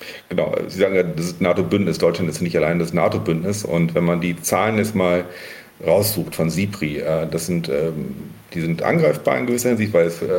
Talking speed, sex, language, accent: 190 wpm, male, German, German